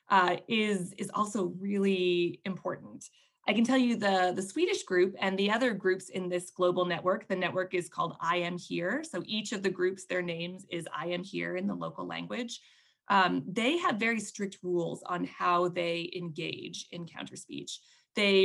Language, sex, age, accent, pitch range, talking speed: English, female, 20-39, American, 175-220 Hz, 190 wpm